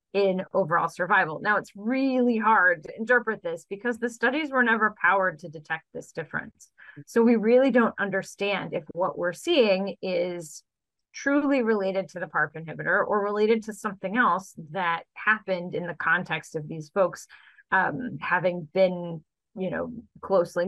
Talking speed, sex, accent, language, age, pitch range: 160 wpm, female, American, English, 30-49, 175-220 Hz